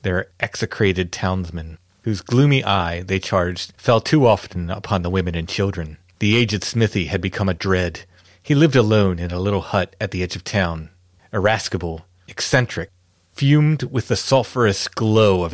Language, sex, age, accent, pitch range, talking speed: English, male, 30-49, American, 90-110 Hz, 165 wpm